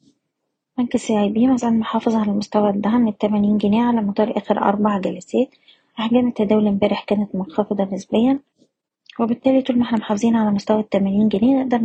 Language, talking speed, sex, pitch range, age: Arabic, 160 wpm, female, 205-235 Hz, 20-39